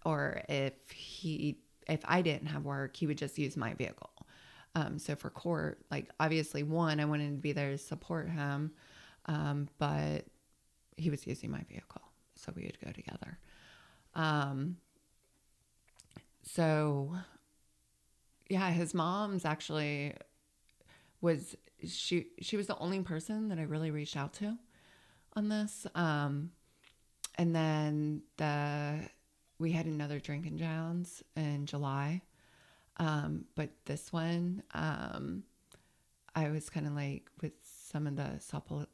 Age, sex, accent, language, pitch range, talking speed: 30-49, female, American, English, 145-190 Hz, 135 wpm